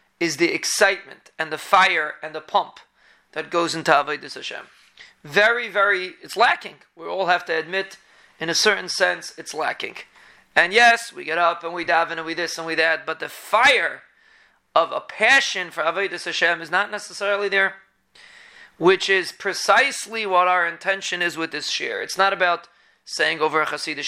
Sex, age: male, 30-49